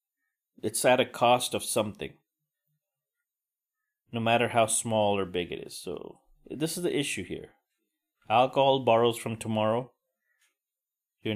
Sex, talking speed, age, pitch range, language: male, 130 wpm, 30-49, 105-140 Hz, English